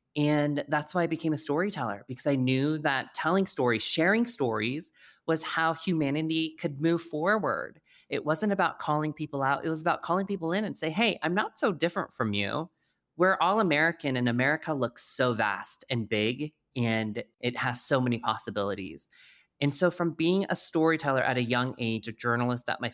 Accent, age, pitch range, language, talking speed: American, 20-39, 120-165 Hz, English, 190 wpm